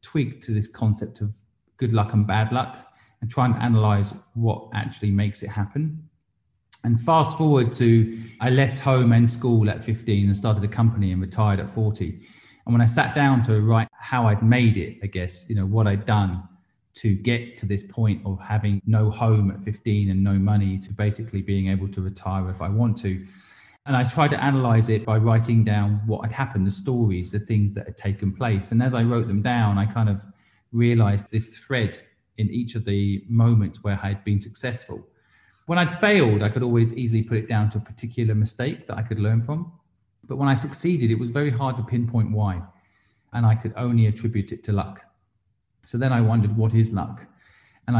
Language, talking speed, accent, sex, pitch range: English, 210 wpm, British, male, 100-120 Hz